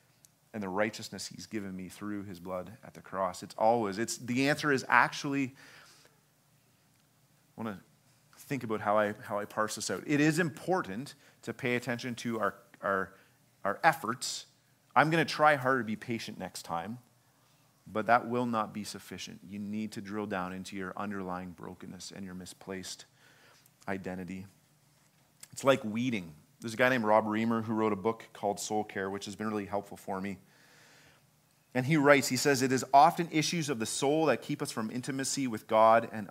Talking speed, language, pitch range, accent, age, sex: 190 wpm, English, 105-140 Hz, American, 30-49, male